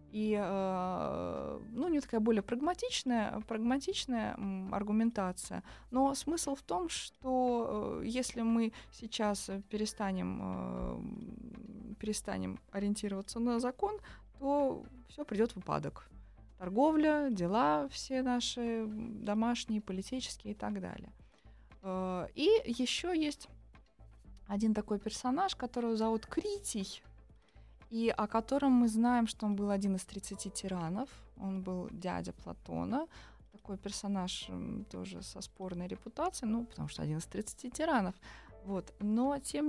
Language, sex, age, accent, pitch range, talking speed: Russian, female, 20-39, native, 195-250 Hz, 115 wpm